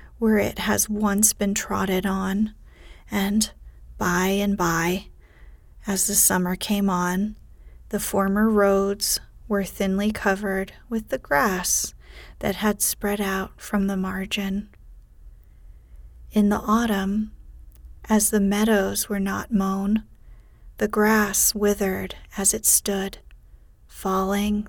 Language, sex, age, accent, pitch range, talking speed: English, female, 30-49, American, 180-210 Hz, 115 wpm